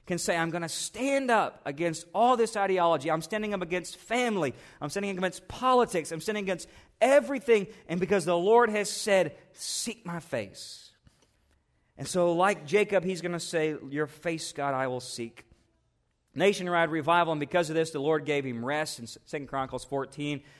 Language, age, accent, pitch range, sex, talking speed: English, 40-59, American, 130-175 Hz, male, 185 wpm